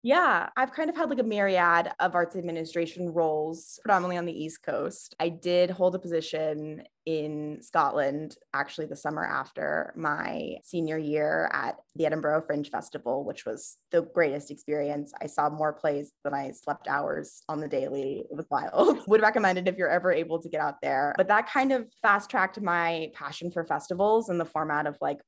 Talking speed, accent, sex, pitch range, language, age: 190 wpm, American, female, 160-190 Hz, English, 20-39